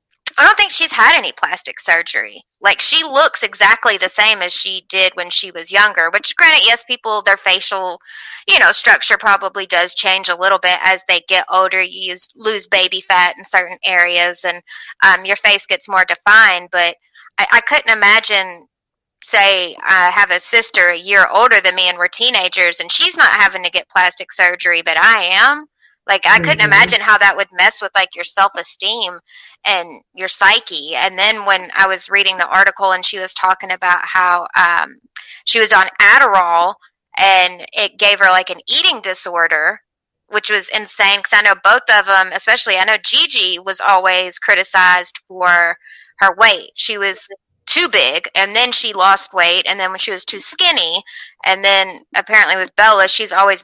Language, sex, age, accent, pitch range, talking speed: English, female, 20-39, American, 180-210 Hz, 190 wpm